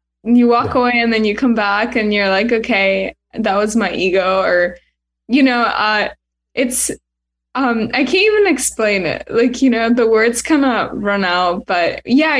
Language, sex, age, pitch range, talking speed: English, female, 10-29, 185-245 Hz, 185 wpm